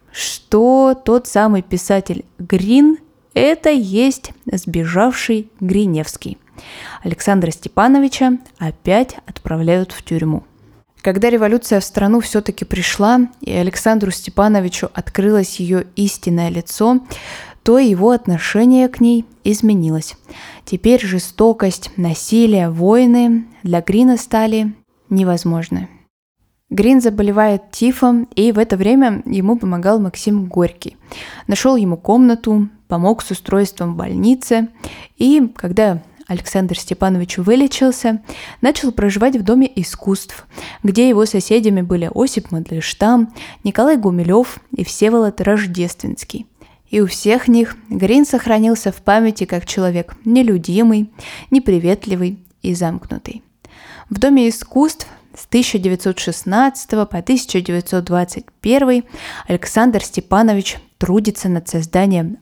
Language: Russian